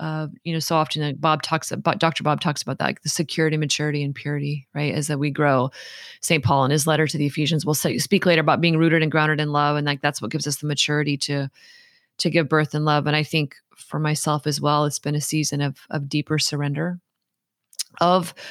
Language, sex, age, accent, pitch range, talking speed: English, female, 30-49, American, 150-165 Hz, 235 wpm